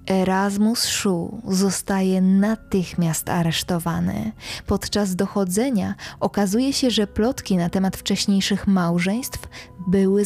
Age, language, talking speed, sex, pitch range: 20-39, Polish, 95 wpm, female, 190-235 Hz